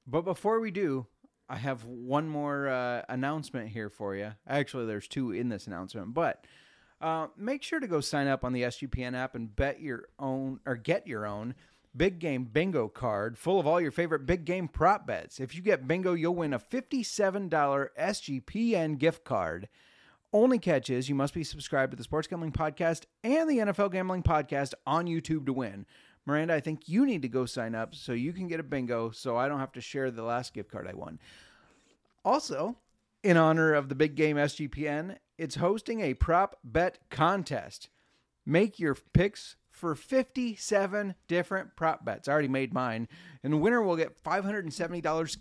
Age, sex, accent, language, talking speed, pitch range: 30-49, male, American, English, 190 wpm, 125-175 Hz